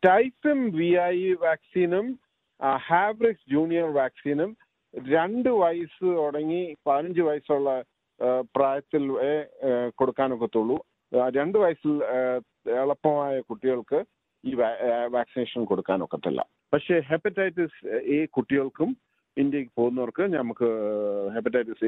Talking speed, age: 80 wpm, 50-69